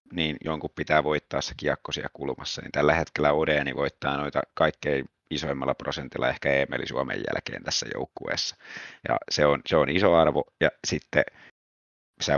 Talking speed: 155 wpm